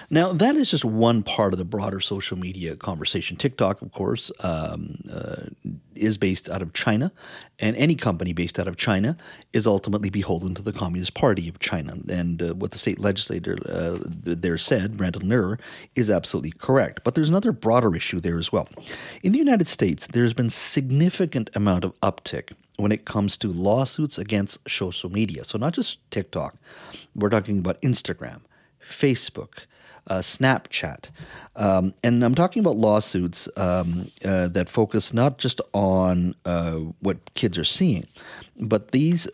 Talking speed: 165 wpm